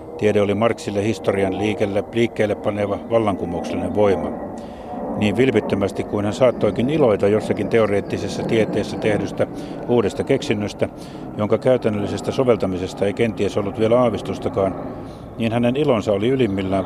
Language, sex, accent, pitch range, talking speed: Finnish, male, native, 95-115 Hz, 120 wpm